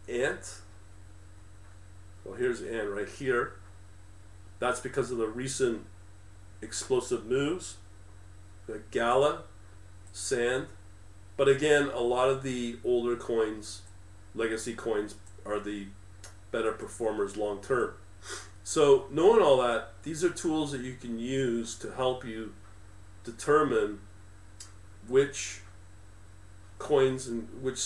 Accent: American